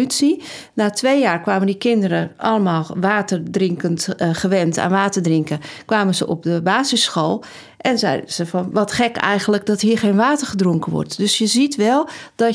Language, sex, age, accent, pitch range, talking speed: Dutch, female, 40-59, Dutch, 190-245 Hz, 170 wpm